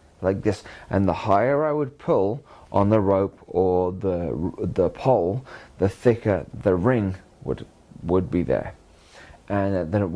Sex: male